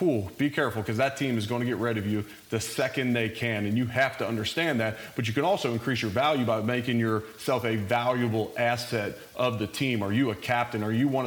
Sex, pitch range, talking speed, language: male, 115-135 Hz, 245 wpm, English